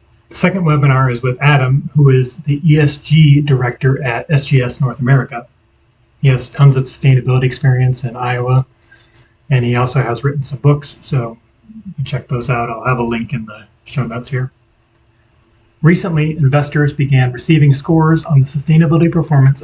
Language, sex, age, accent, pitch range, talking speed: English, male, 30-49, American, 120-145 Hz, 165 wpm